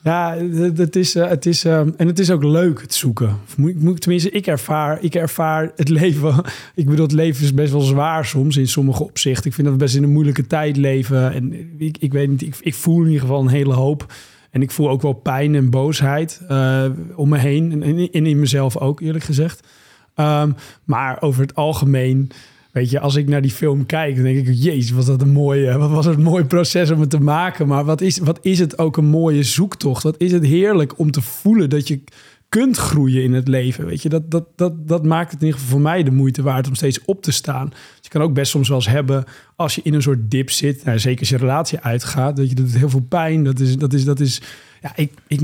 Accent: Dutch